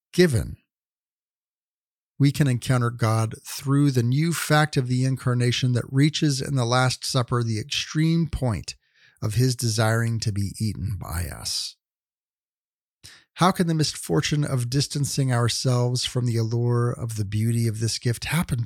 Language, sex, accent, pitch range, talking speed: English, male, American, 115-150 Hz, 150 wpm